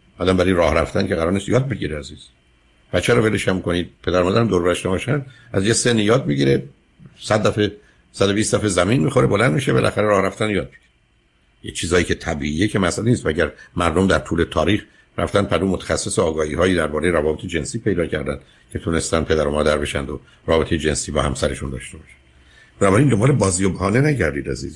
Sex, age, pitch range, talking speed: male, 60-79, 75-100 Hz, 190 wpm